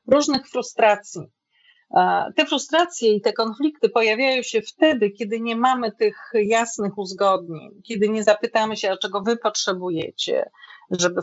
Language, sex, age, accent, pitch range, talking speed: Polish, female, 40-59, native, 190-230 Hz, 130 wpm